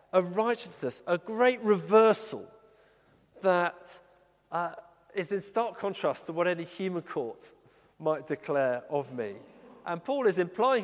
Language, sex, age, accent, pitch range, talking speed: English, male, 40-59, British, 175-235 Hz, 135 wpm